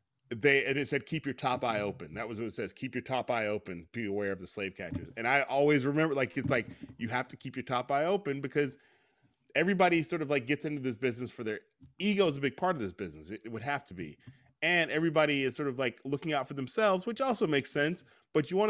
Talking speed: 265 wpm